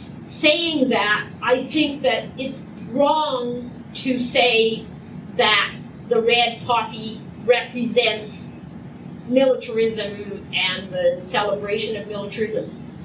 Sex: female